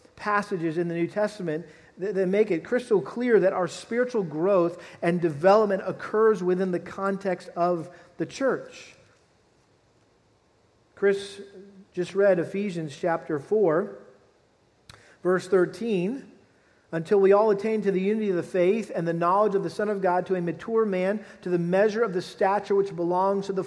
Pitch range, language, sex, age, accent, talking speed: 165-195 Hz, English, male, 40-59, American, 160 wpm